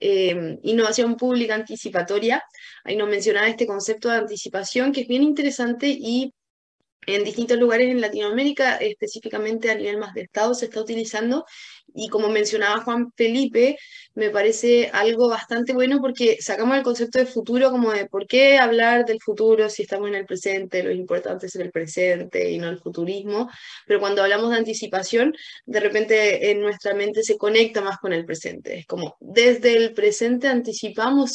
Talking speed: 170 wpm